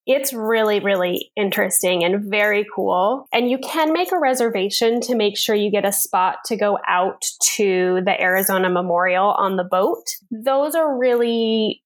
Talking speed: 165 wpm